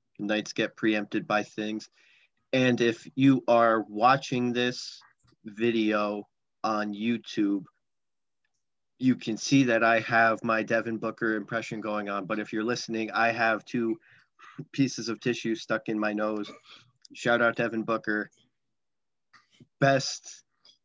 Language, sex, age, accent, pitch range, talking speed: English, male, 30-49, American, 105-120 Hz, 130 wpm